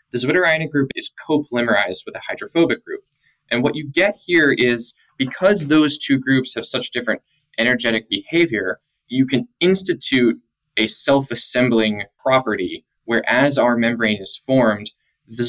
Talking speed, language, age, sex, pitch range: 145 wpm, English, 20-39, male, 115-140 Hz